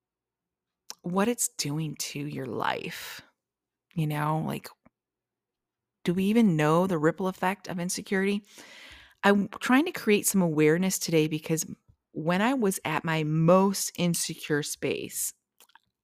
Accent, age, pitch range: American, 30-49, 155-195 Hz